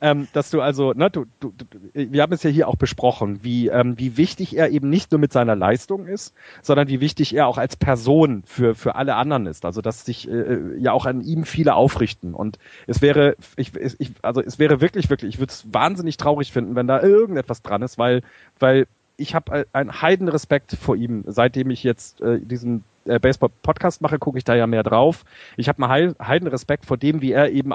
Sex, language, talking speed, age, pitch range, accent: male, German, 220 wpm, 30-49, 120-155 Hz, German